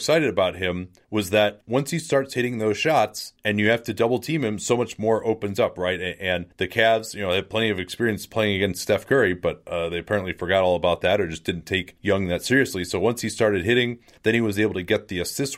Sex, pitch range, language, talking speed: male, 90-115 Hz, English, 250 wpm